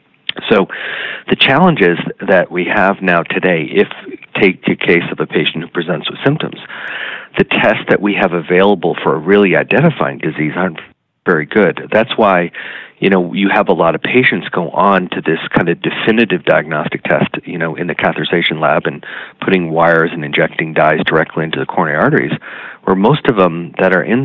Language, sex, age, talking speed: English, male, 40-59, 190 wpm